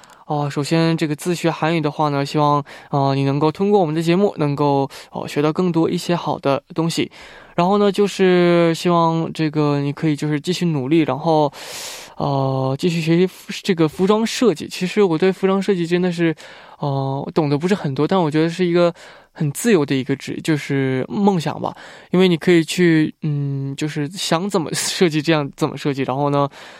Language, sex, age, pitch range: Korean, male, 20-39, 145-190 Hz